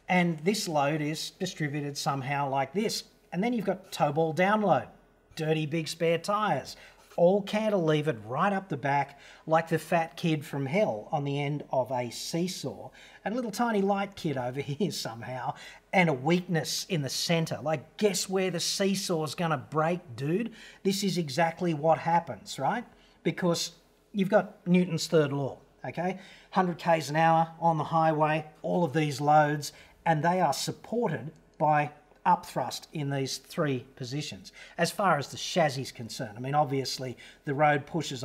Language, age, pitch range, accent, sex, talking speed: English, 40-59, 140-175 Hz, Australian, male, 170 wpm